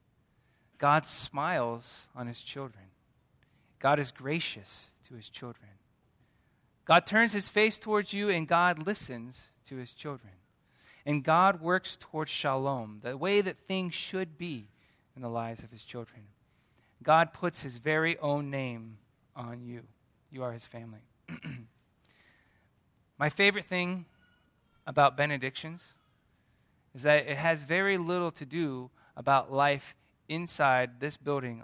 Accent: American